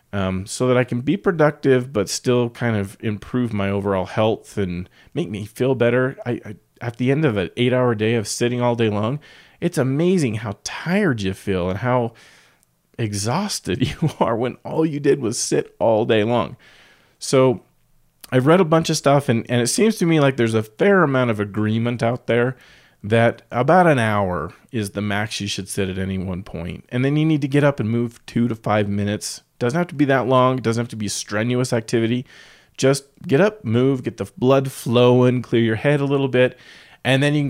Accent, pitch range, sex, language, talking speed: American, 105-130 Hz, male, English, 215 wpm